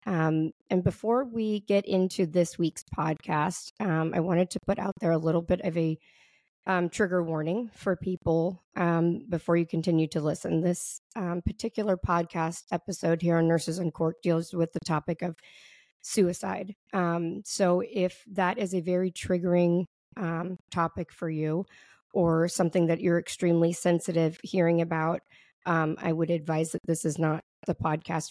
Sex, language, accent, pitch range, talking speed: female, English, American, 165-185 Hz, 165 wpm